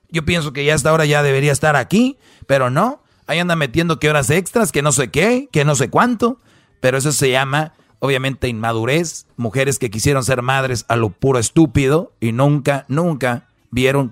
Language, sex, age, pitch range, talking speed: Spanish, male, 40-59, 130-155 Hz, 190 wpm